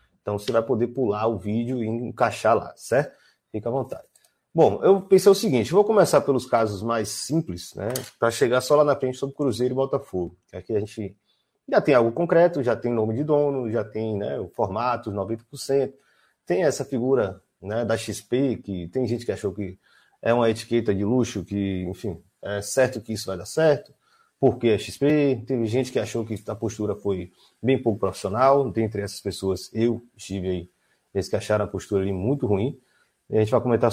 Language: Portuguese